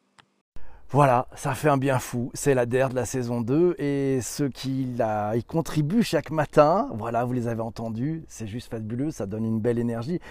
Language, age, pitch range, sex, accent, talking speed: French, 40-59, 115-145 Hz, male, French, 185 wpm